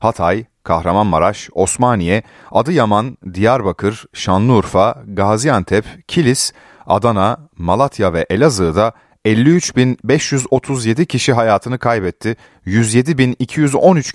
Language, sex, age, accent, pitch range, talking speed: Turkish, male, 40-59, native, 95-140 Hz, 70 wpm